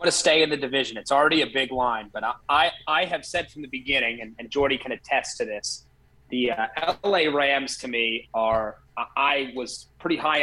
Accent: American